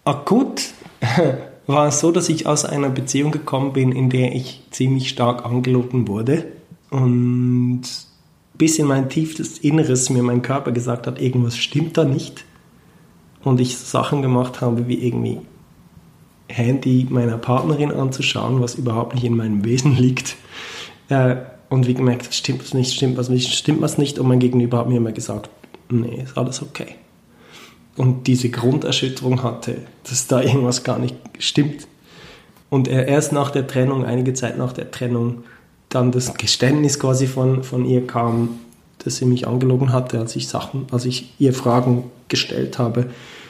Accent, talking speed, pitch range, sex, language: German, 160 wpm, 125-140 Hz, male, German